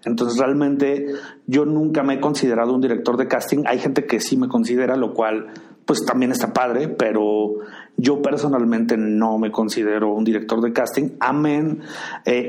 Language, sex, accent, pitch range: Spanish, male, Mexican, 115-150 Hz